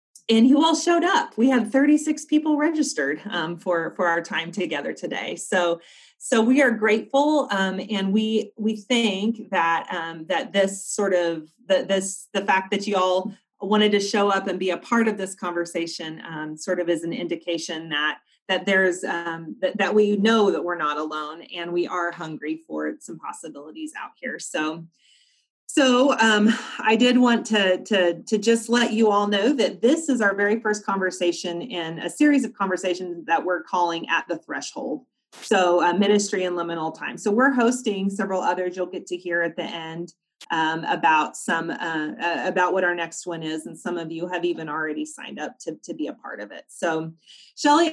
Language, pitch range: English, 175-235 Hz